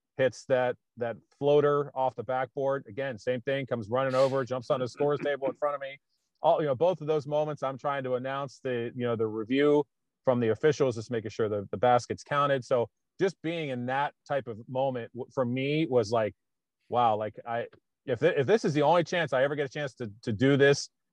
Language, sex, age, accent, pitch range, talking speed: English, male, 30-49, American, 120-140 Hz, 225 wpm